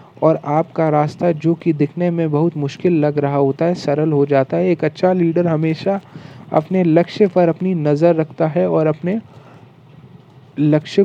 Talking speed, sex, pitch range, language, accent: 170 wpm, male, 150-180 Hz, Hindi, native